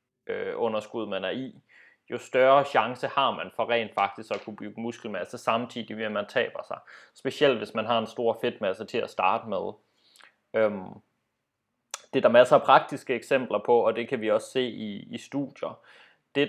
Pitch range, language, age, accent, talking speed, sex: 110-130 Hz, Danish, 20-39, native, 185 wpm, male